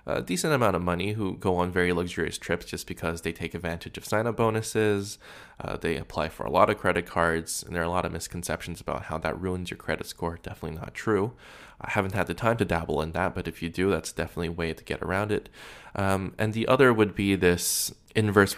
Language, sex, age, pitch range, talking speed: English, male, 20-39, 85-100 Hz, 235 wpm